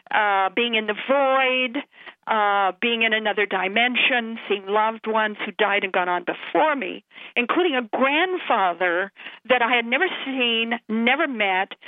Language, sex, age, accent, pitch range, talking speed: English, female, 50-69, American, 205-245 Hz, 150 wpm